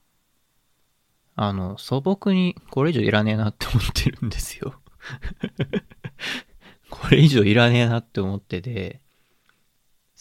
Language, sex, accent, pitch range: Japanese, male, native, 100-145 Hz